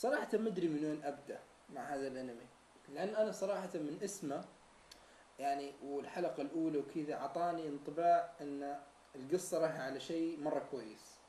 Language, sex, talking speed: Arabic, male, 140 wpm